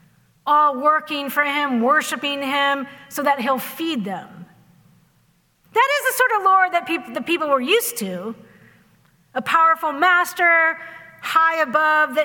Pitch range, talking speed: 245-345 Hz, 135 wpm